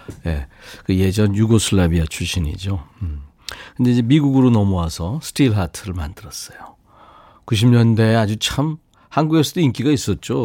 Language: Korean